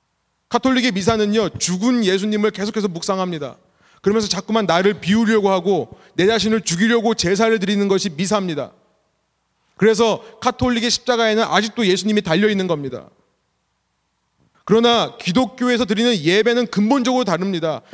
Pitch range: 180-250 Hz